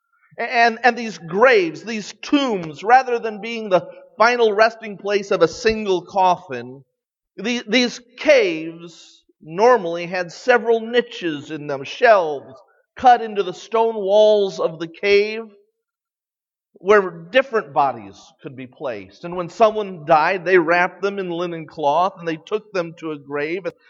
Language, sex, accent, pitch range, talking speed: English, male, American, 155-220 Hz, 150 wpm